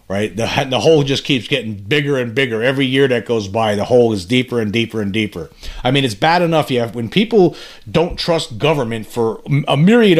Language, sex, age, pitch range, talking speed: English, male, 40-59, 120-170 Hz, 225 wpm